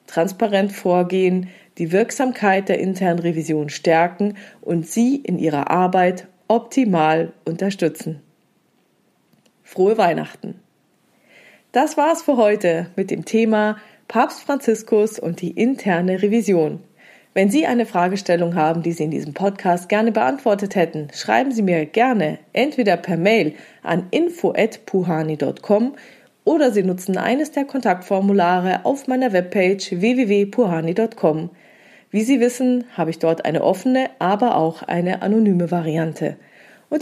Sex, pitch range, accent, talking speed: female, 170-225 Hz, German, 125 wpm